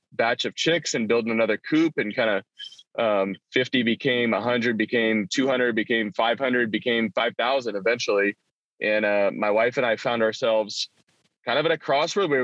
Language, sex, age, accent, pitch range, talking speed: English, male, 20-39, American, 115-140 Hz, 165 wpm